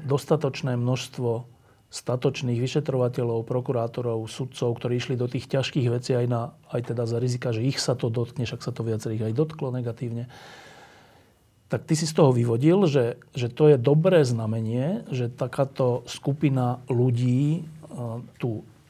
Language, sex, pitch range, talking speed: Slovak, male, 120-145 Hz, 150 wpm